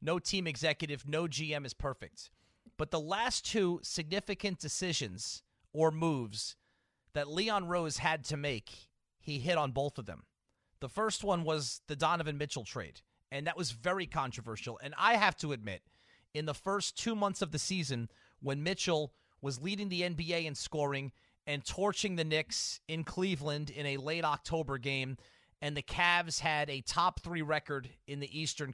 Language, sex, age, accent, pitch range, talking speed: English, male, 30-49, American, 135-180 Hz, 175 wpm